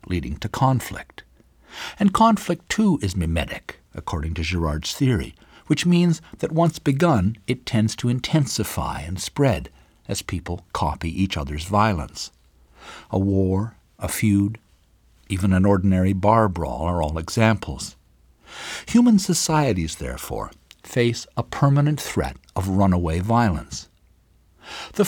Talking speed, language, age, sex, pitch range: 125 wpm, English, 60-79, male, 85-130 Hz